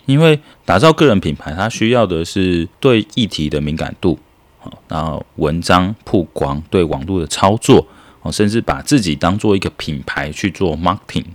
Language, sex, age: Chinese, male, 30-49